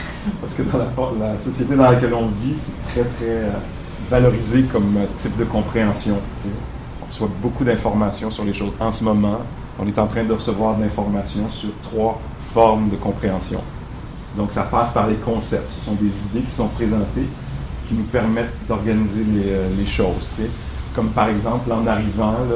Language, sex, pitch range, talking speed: English, male, 105-125 Hz, 175 wpm